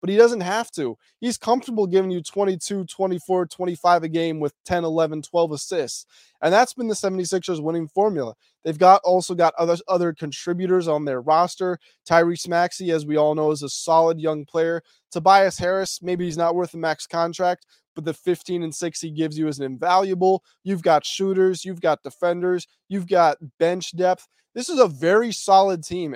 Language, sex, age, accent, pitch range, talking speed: English, male, 20-39, American, 155-190 Hz, 190 wpm